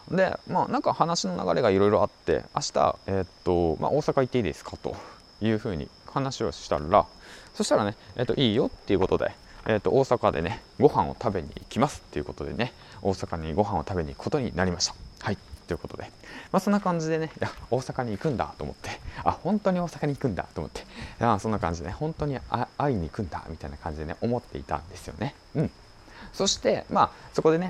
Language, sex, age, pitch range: Japanese, male, 20-39, 85-125 Hz